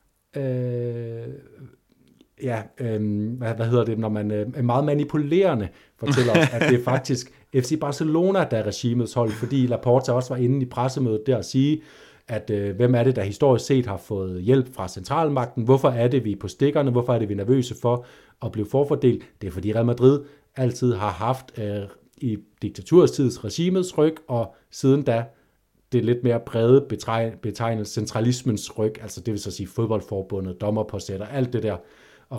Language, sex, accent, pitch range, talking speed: Danish, male, native, 105-130 Hz, 185 wpm